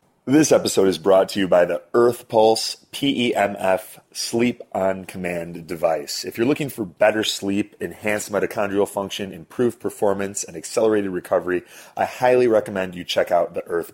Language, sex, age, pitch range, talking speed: English, male, 30-49, 90-105 Hz, 160 wpm